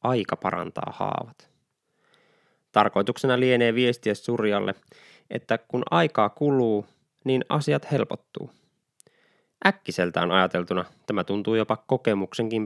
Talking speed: 95 wpm